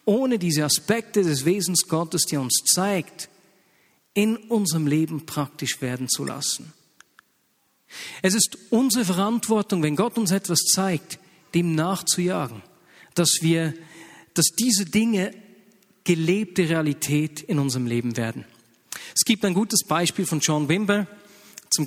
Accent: German